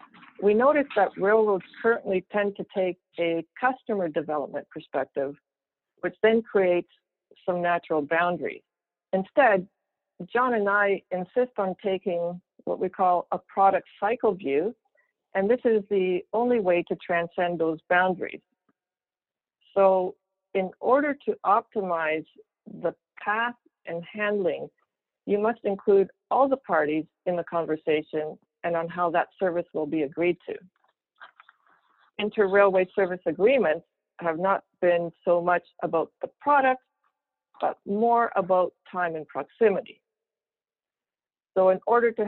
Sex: female